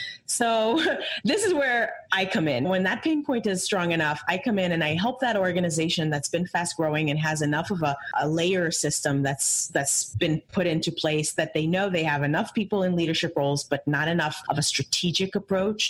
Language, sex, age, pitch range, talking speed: English, female, 30-49, 150-195 Hz, 215 wpm